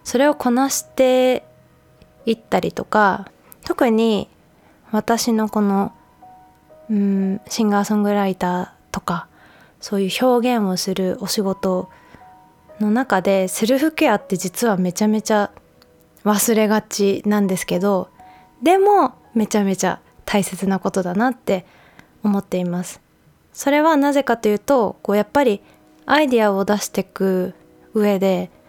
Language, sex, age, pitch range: Japanese, female, 20-39, 185-250 Hz